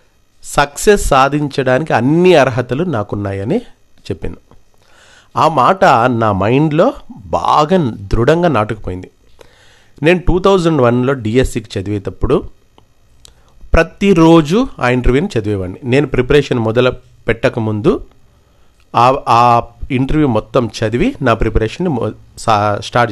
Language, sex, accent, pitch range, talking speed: Telugu, male, native, 110-150 Hz, 90 wpm